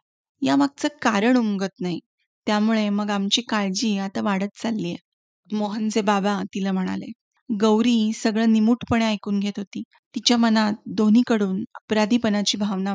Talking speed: 130 wpm